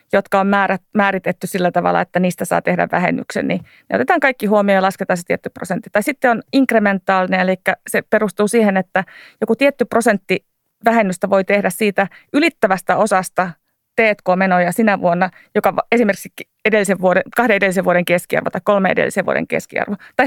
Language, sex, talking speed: Finnish, female, 170 wpm